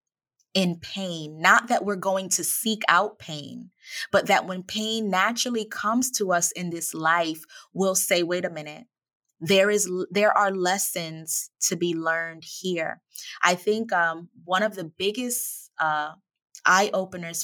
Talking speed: 155 wpm